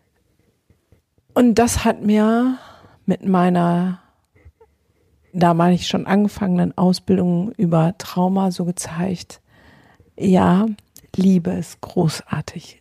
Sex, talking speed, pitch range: female, 95 wpm, 175-220 Hz